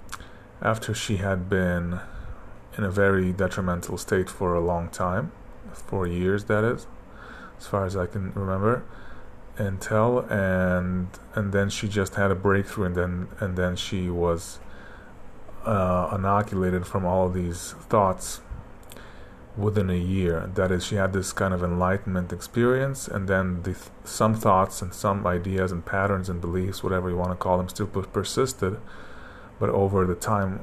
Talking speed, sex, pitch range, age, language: 160 wpm, male, 90-100 Hz, 30-49, English